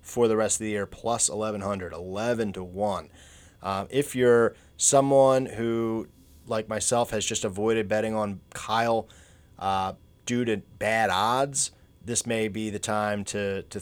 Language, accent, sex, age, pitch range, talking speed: English, American, male, 30-49, 95-120 Hz, 150 wpm